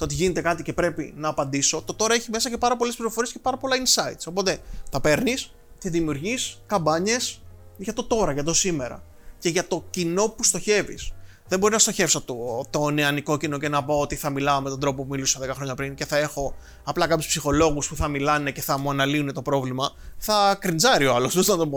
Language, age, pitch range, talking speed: Greek, 20-39, 150-230 Hz, 220 wpm